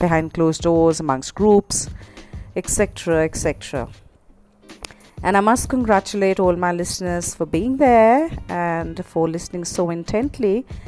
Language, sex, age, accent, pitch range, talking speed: English, female, 30-49, Indian, 155-200 Hz, 130 wpm